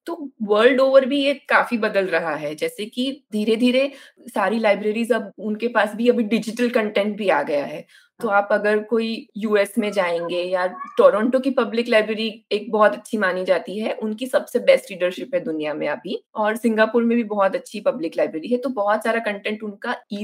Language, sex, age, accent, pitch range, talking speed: Hindi, female, 20-39, native, 205-260 Hz, 200 wpm